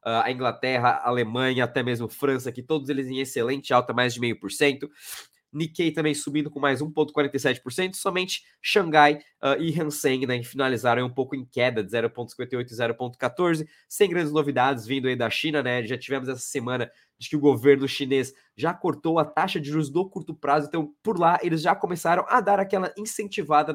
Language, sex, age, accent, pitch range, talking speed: Portuguese, male, 20-39, Brazilian, 130-160 Hz, 200 wpm